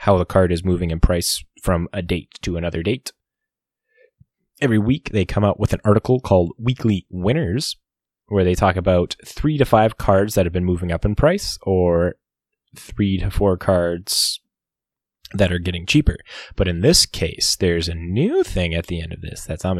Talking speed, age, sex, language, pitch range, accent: 190 wpm, 20-39, male, English, 90-120 Hz, American